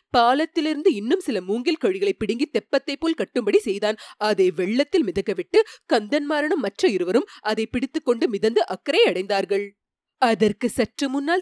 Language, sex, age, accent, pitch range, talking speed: Tamil, female, 30-49, native, 210-340 Hz, 120 wpm